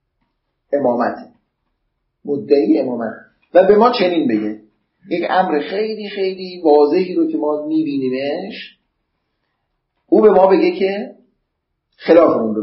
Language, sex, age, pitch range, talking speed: Persian, male, 40-59, 115-180 Hz, 115 wpm